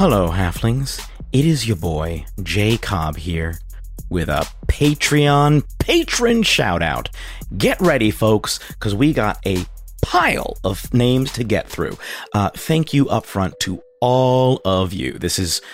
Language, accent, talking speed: English, American, 150 wpm